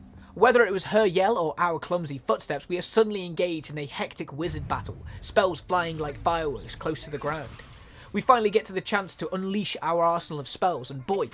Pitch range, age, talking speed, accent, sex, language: 145-190 Hz, 20-39, 210 wpm, British, male, Italian